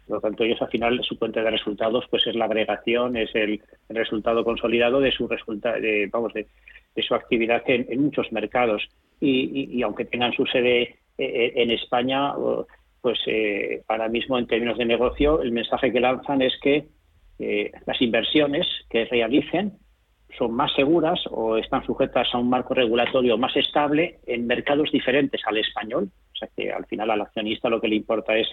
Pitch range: 110-125 Hz